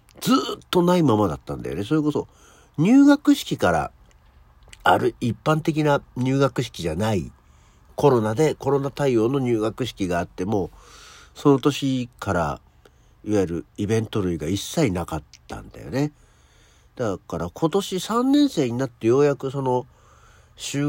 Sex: male